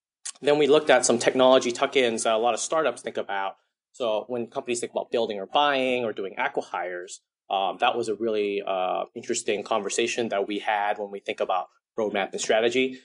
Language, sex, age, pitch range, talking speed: English, male, 30-49, 105-120 Hz, 200 wpm